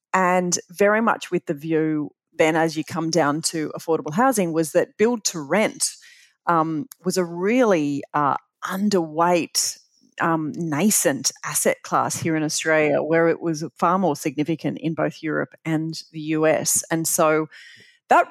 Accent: Australian